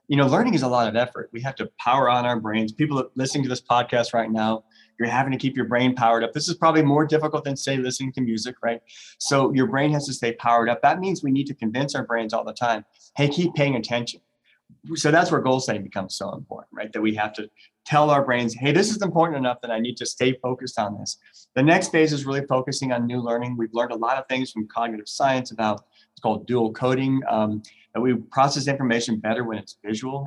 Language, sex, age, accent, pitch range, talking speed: English, male, 30-49, American, 115-135 Hz, 250 wpm